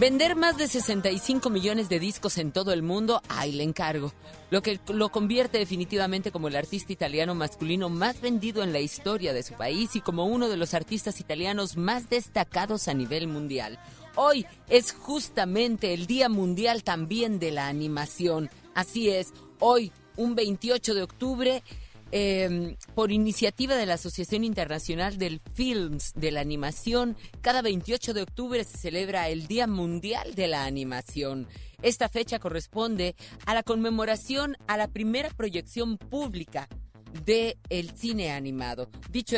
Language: Spanish